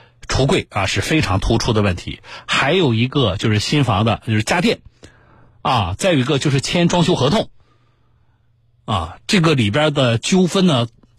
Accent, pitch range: native, 110-145 Hz